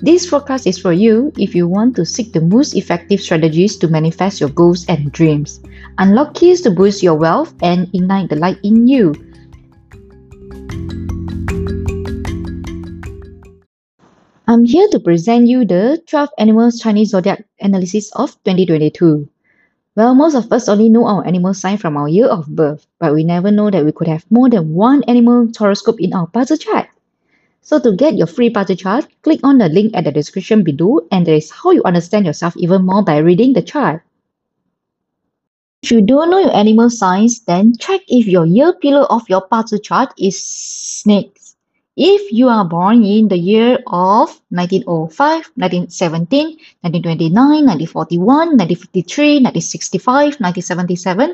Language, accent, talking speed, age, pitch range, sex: English, Malaysian, 160 wpm, 20-39, 170-245 Hz, female